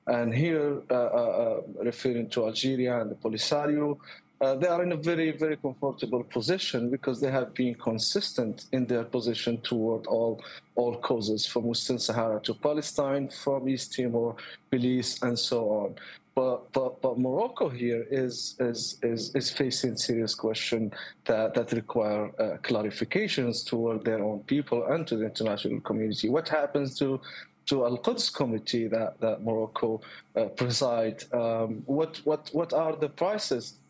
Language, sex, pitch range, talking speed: English, male, 115-140 Hz, 155 wpm